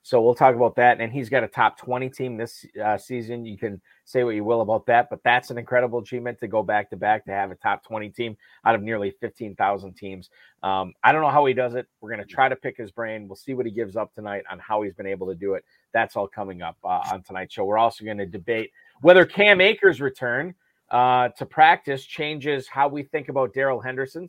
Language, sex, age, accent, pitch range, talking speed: English, male, 30-49, American, 115-140 Hz, 245 wpm